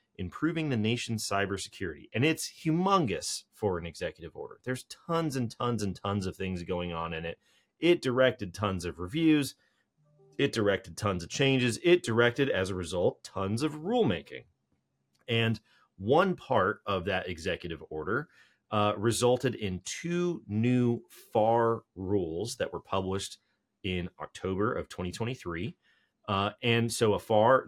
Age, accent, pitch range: 30-49, American, 95-130 Hz